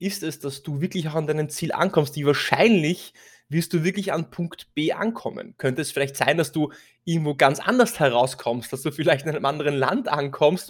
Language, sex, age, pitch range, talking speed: German, male, 20-39, 130-165 Hz, 210 wpm